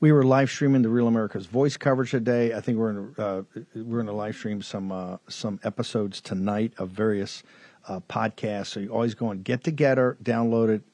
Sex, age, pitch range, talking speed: male, 50-69, 105-125 Hz, 205 wpm